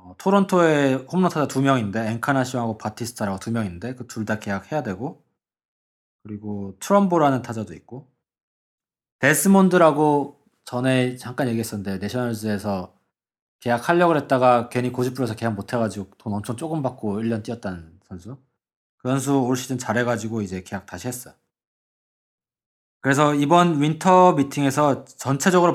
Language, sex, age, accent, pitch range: Korean, male, 20-39, native, 110-150 Hz